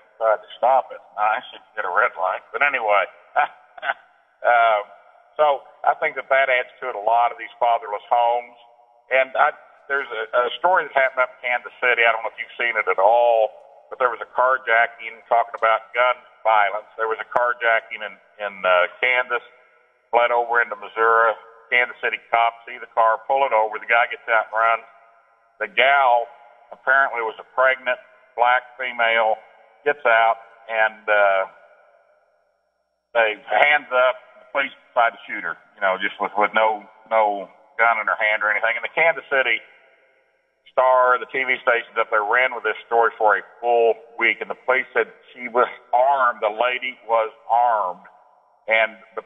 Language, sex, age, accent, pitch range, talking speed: English, male, 50-69, American, 115-125 Hz, 180 wpm